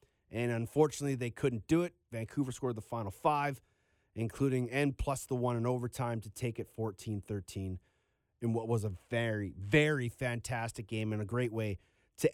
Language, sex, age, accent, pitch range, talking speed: English, male, 30-49, American, 120-155 Hz, 170 wpm